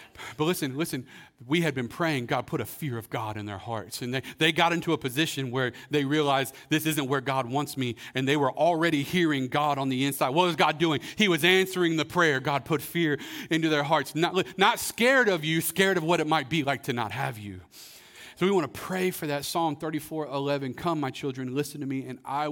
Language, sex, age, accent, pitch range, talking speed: English, male, 40-59, American, 120-160 Hz, 235 wpm